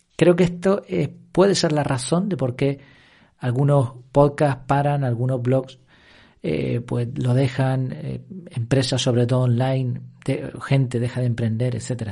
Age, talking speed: 40-59, 155 wpm